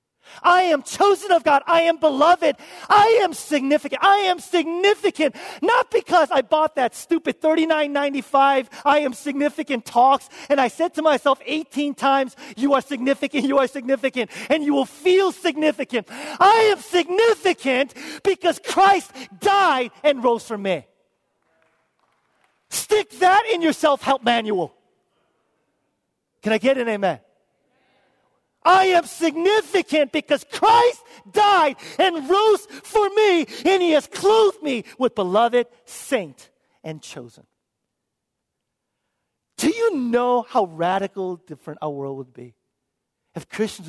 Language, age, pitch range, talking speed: English, 40-59, 220-350 Hz, 130 wpm